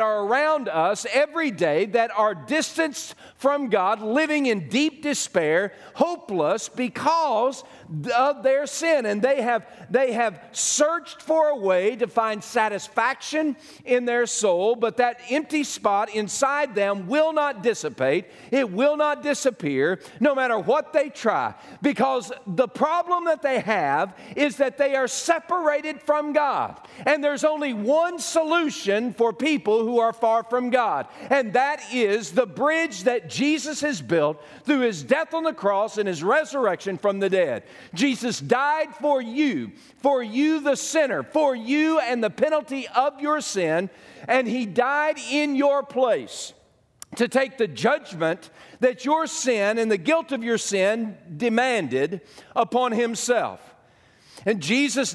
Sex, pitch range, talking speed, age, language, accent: male, 225-290 Hz, 150 wpm, 50-69, English, American